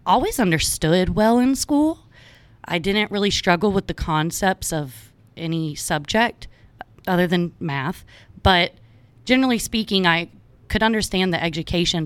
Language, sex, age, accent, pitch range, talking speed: English, female, 30-49, American, 140-180 Hz, 130 wpm